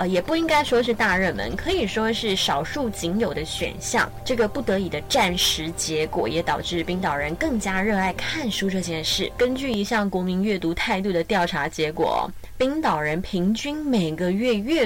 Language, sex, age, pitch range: Chinese, female, 20-39, 170-225 Hz